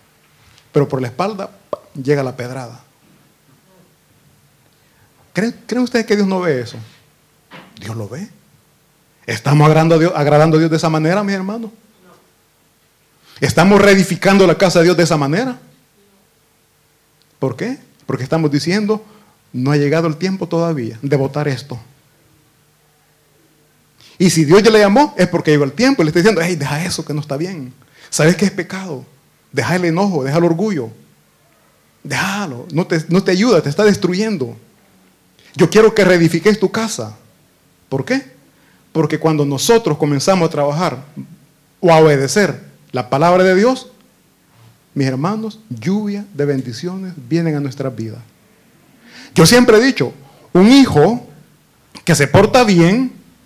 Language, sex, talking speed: Italian, male, 150 wpm